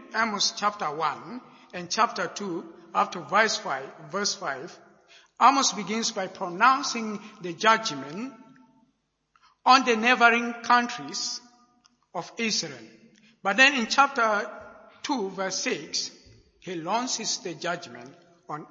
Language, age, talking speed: English, 50-69, 115 wpm